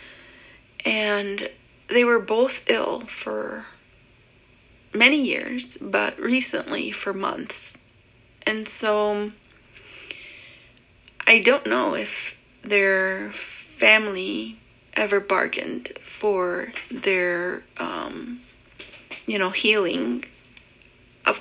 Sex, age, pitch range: female, 30-49, 180-245 Hz